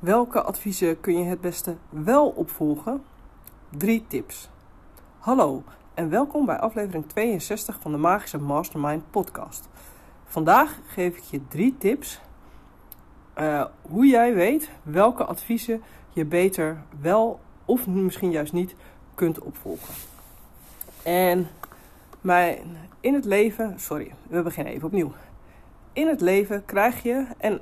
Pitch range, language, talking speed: 155-225 Hz, Dutch, 125 wpm